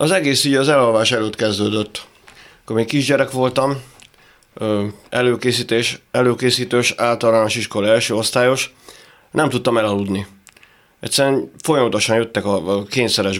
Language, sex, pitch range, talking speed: Hungarian, male, 105-125 Hz, 110 wpm